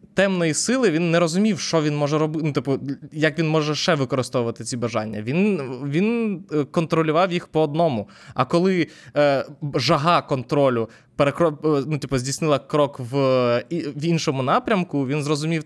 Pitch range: 135-170 Hz